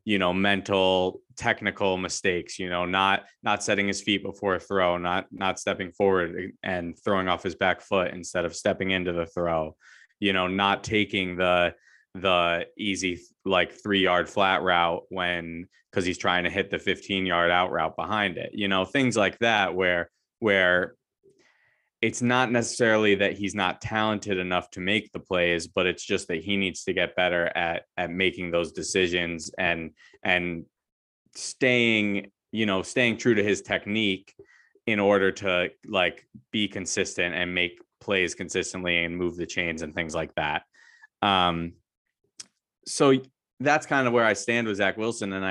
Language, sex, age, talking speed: English, male, 20-39, 170 wpm